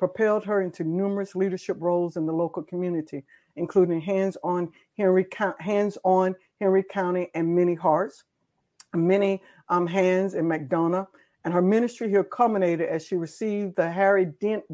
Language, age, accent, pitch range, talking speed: English, 60-79, American, 170-200 Hz, 150 wpm